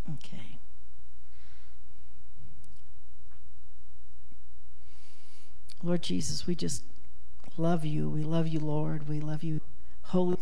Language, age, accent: English, 60-79, American